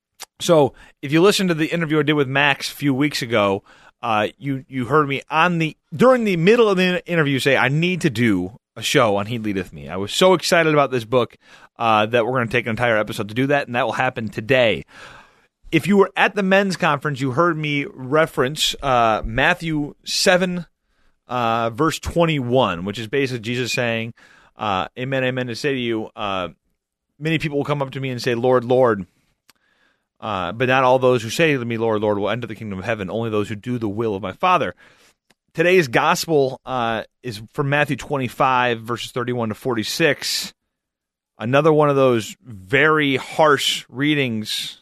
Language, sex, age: English, male, 30-49